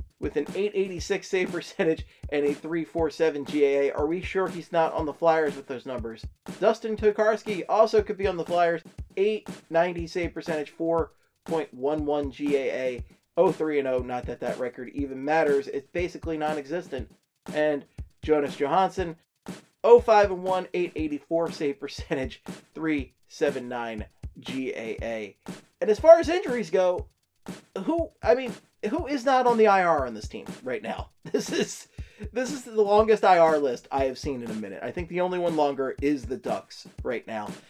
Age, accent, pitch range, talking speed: 30-49, American, 140-195 Hz, 160 wpm